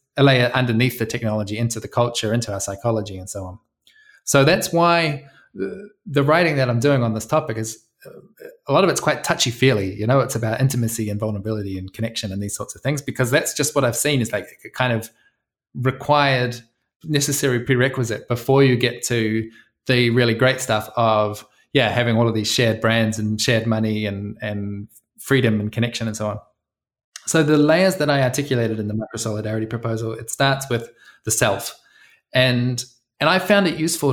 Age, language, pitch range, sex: 20-39, English, 110-135 Hz, male